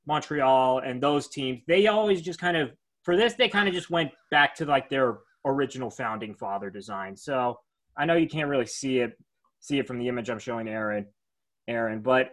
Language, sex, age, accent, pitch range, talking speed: English, male, 20-39, American, 130-185 Hz, 205 wpm